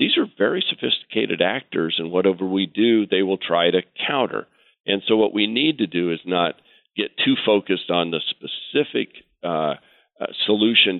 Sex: male